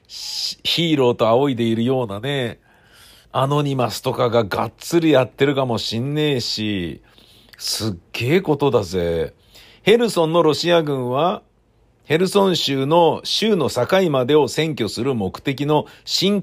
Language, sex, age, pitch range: Japanese, male, 50-69, 115-150 Hz